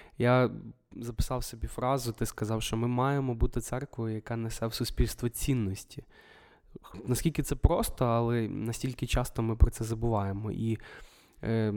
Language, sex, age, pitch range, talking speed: Ukrainian, male, 20-39, 115-130 Hz, 145 wpm